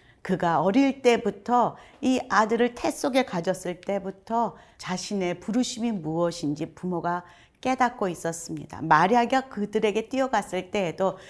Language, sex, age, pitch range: Korean, female, 40-59, 165-220 Hz